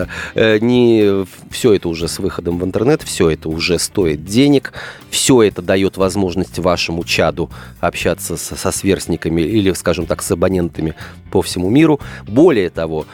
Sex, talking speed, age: male, 140 wpm, 30-49